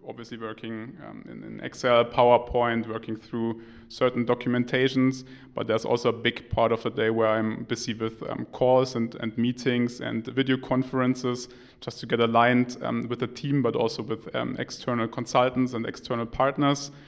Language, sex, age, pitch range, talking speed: German, male, 20-39, 115-130 Hz, 170 wpm